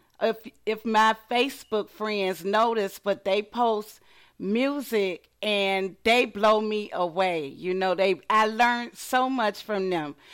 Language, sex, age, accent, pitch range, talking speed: English, female, 40-59, American, 200-235 Hz, 140 wpm